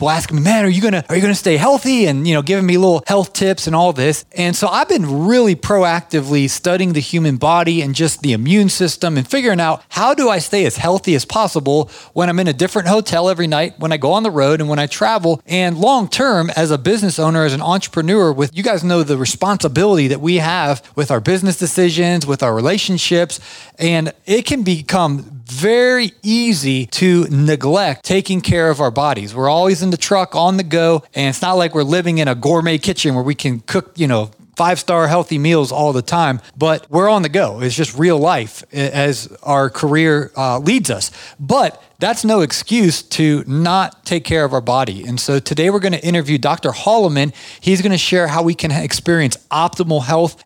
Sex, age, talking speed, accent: male, 30-49, 215 wpm, American